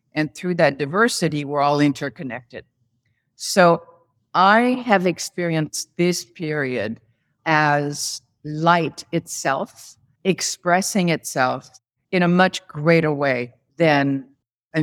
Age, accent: 50-69, American